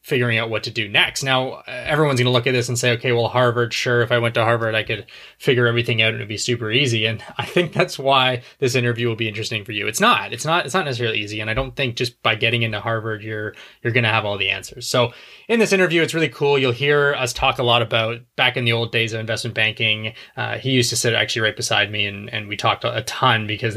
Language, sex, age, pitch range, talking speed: English, male, 20-39, 110-130 Hz, 275 wpm